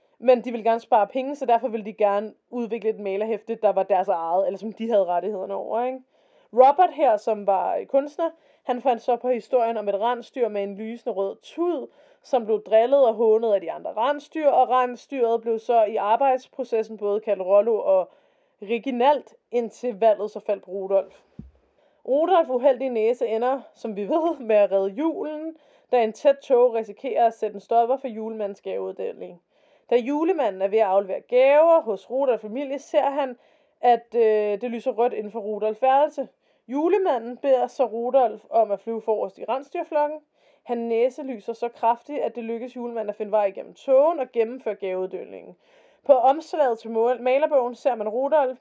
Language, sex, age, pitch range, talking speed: Danish, female, 20-39, 220-275 Hz, 175 wpm